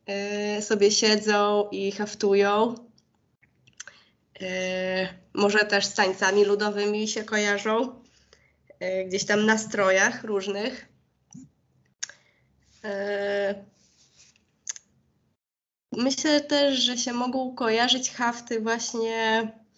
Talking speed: 75 wpm